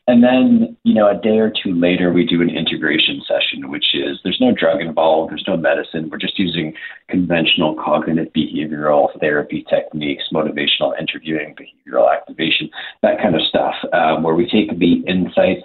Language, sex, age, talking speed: English, male, 40-59, 175 wpm